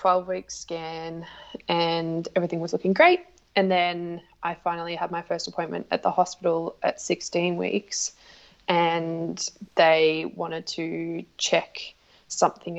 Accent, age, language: Australian, 20-39, English